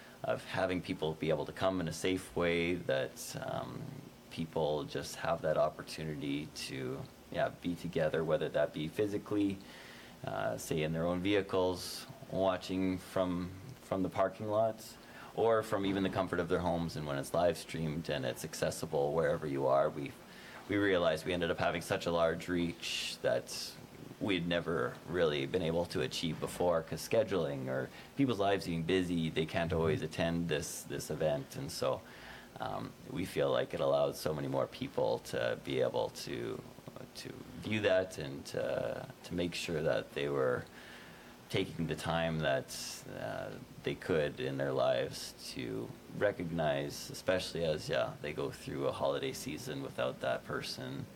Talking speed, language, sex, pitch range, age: 165 wpm, English, male, 80-100 Hz, 30-49